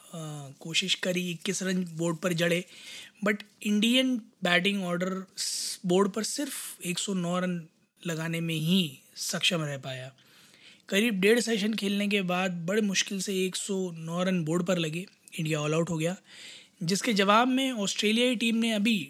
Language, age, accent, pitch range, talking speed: Hindi, 20-39, native, 175-210 Hz, 155 wpm